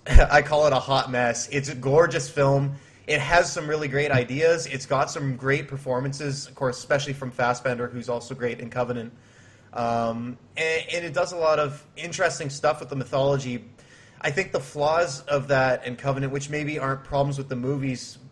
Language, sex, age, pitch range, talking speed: English, male, 20-39, 125-145 Hz, 195 wpm